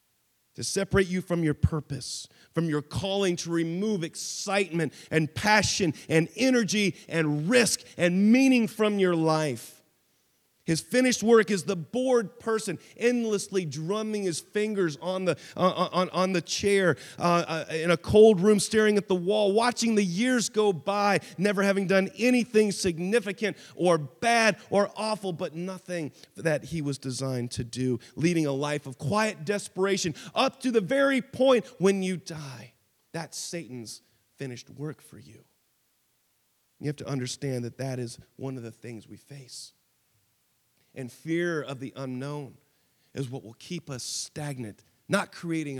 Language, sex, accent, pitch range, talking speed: English, male, American, 150-200 Hz, 155 wpm